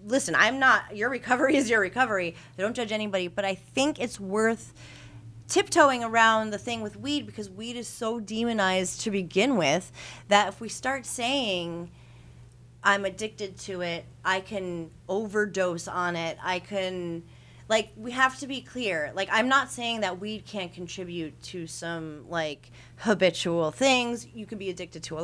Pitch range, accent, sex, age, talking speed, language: 170-220 Hz, American, female, 30-49, 170 wpm, English